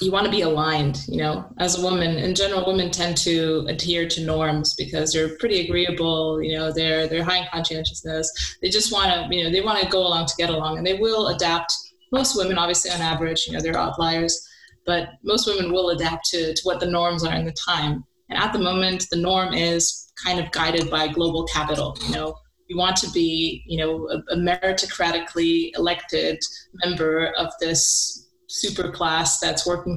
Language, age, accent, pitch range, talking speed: English, 20-39, American, 165-185 Hz, 200 wpm